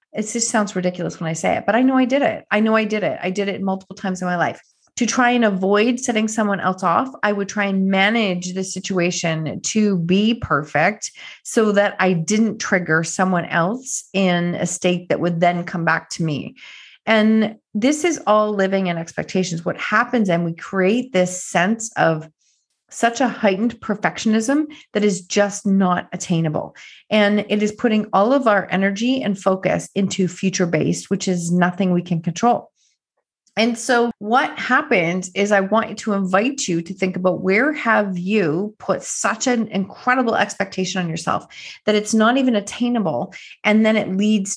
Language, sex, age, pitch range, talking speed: English, female, 30-49, 185-220 Hz, 185 wpm